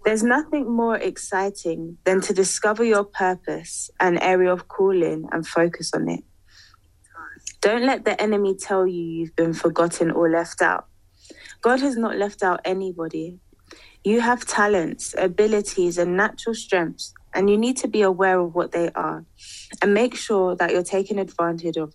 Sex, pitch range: female, 170-205 Hz